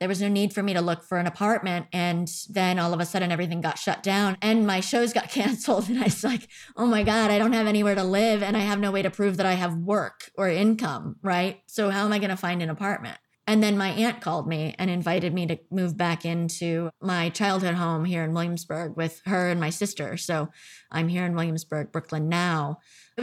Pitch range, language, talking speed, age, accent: 165-200 Hz, English, 245 wpm, 20-39, American